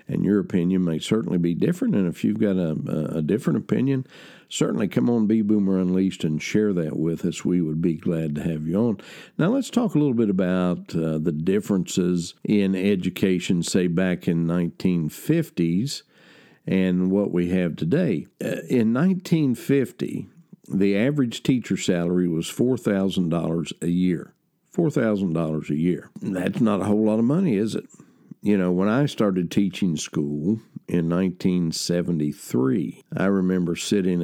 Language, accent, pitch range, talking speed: English, American, 85-100 Hz, 160 wpm